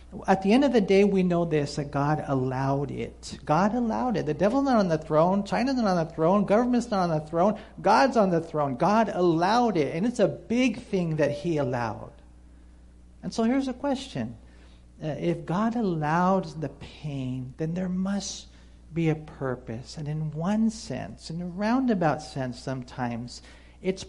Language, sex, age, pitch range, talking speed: English, male, 50-69, 130-190 Hz, 180 wpm